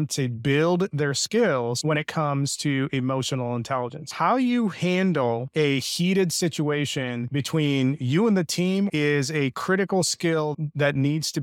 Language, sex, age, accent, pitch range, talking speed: English, male, 30-49, American, 130-155 Hz, 145 wpm